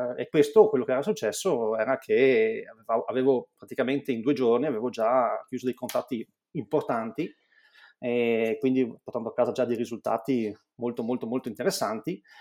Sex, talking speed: male, 150 wpm